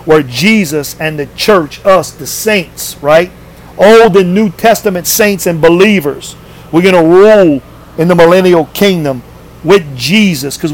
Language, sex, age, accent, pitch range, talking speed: English, male, 50-69, American, 155-210 Hz, 150 wpm